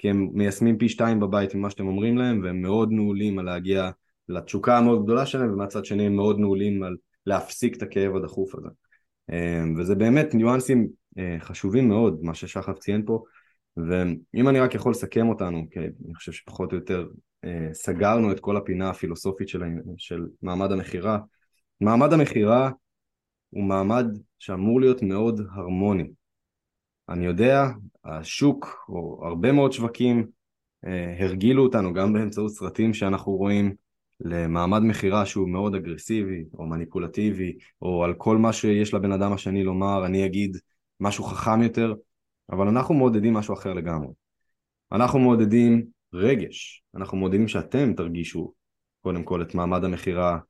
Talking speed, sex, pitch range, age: 145 wpm, male, 90-110 Hz, 20-39